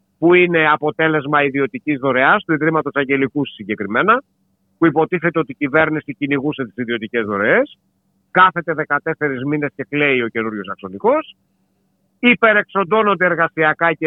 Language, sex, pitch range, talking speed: Greek, male, 140-200 Hz, 125 wpm